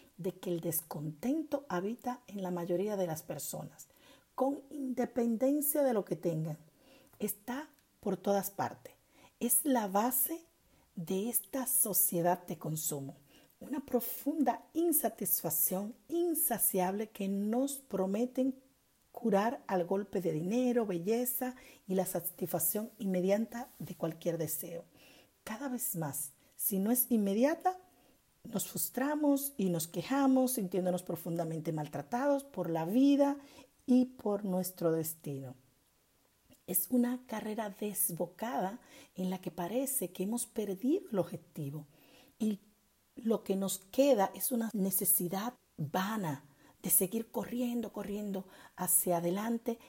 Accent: American